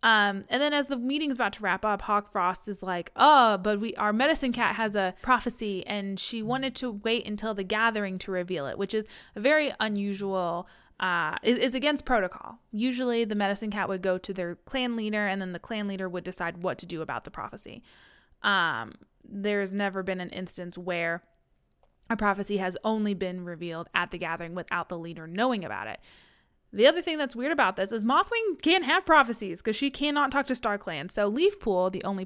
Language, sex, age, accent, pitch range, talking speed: English, female, 20-39, American, 185-240 Hz, 205 wpm